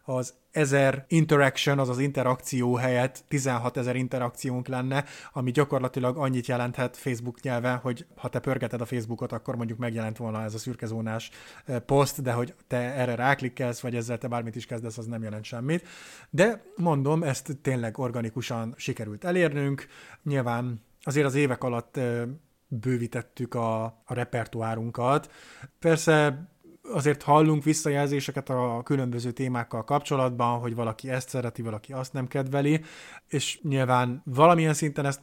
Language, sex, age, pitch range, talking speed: Hungarian, male, 30-49, 120-140 Hz, 140 wpm